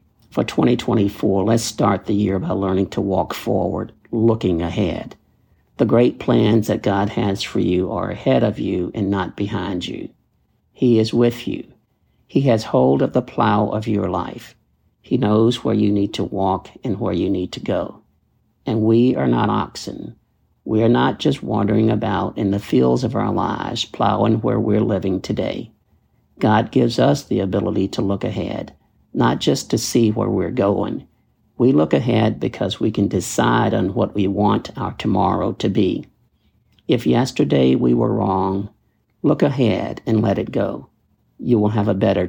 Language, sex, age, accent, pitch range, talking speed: English, male, 60-79, American, 95-115 Hz, 175 wpm